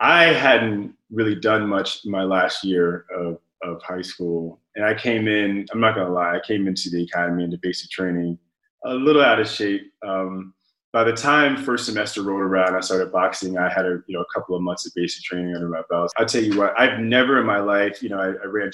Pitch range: 90-115 Hz